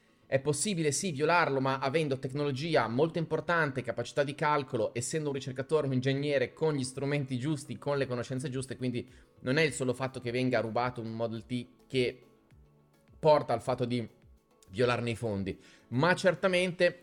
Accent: native